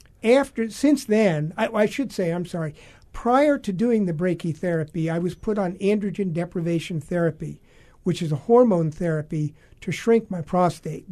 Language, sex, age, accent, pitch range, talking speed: English, male, 50-69, American, 160-190 Hz, 160 wpm